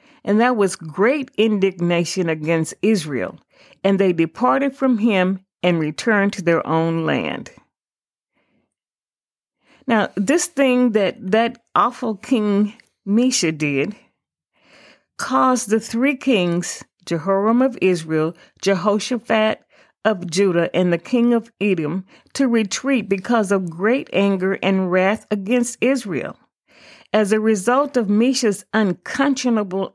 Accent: American